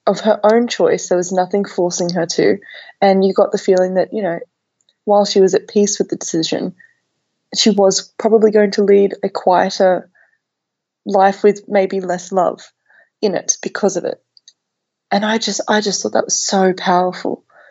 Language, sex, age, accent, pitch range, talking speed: English, female, 20-39, Australian, 180-205 Hz, 185 wpm